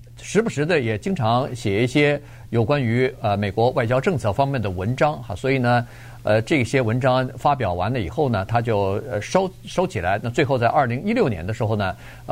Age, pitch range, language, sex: 50-69, 110-135 Hz, Chinese, male